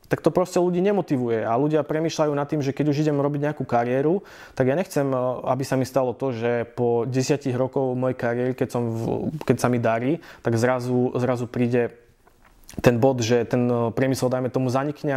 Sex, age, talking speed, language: male, 20-39, 200 wpm, Slovak